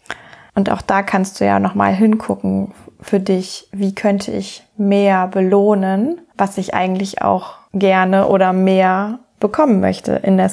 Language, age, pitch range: German, 20-39, 185-220 Hz